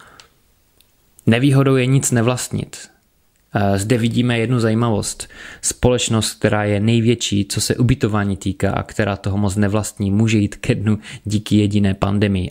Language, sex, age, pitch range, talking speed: Czech, male, 20-39, 100-115 Hz, 135 wpm